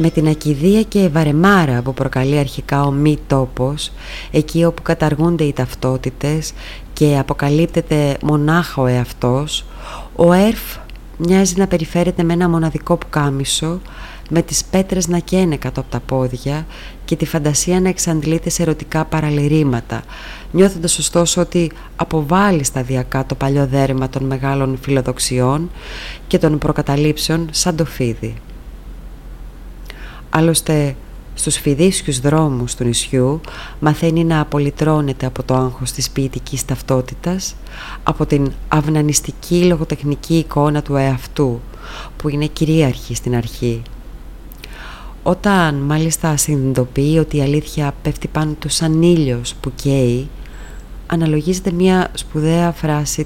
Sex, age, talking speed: female, 20-39, 120 wpm